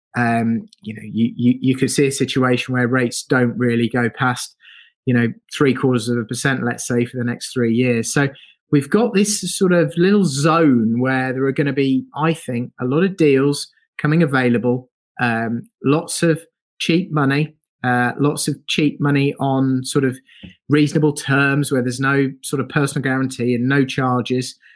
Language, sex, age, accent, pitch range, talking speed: English, male, 30-49, British, 125-150 Hz, 185 wpm